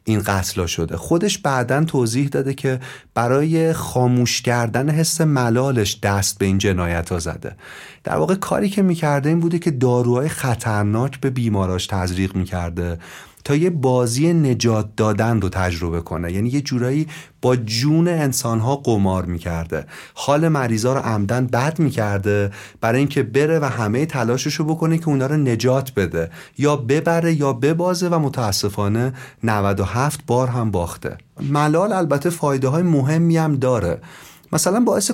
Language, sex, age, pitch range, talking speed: Persian, male, 40-59, 105-160 Hz, 145 wpm